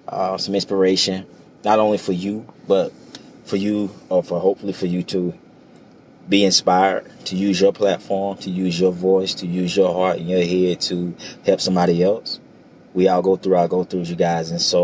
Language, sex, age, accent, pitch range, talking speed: English, male, 20-39, American, 85-95 Hz, 195 wpm